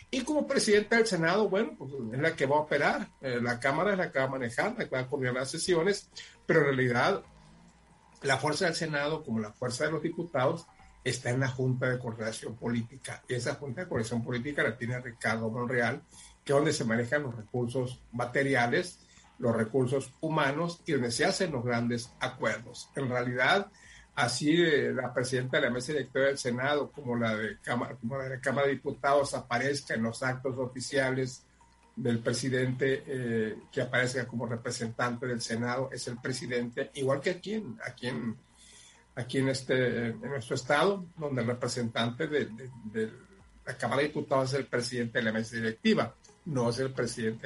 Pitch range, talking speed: 120-140 Hz, 185 wpm